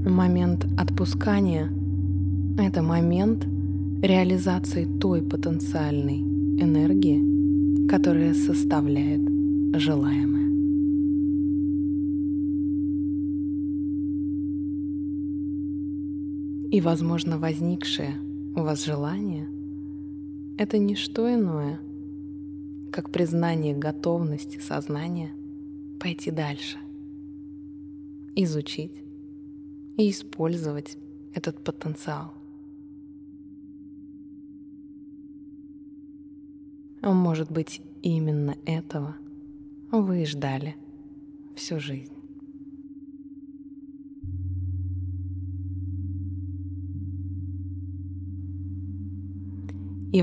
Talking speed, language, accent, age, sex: 50 wpm, Russian, native, 20-39, female